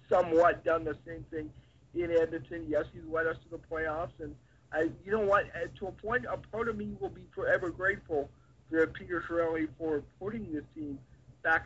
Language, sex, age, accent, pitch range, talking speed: English, male, 50-69, American, 150-200 Hz, 200 wpm